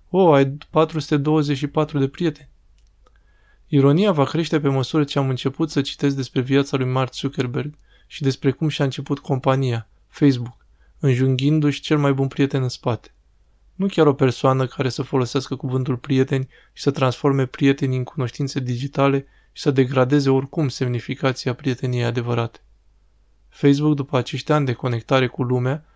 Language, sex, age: Romanian, male, 20-39